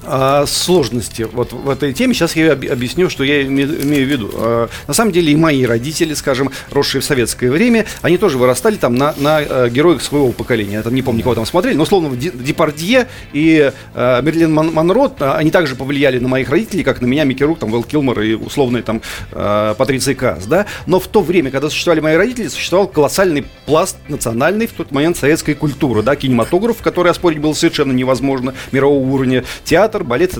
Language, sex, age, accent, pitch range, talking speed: Russian, male, 40-59, native, 135-175 Hz, 185 wpm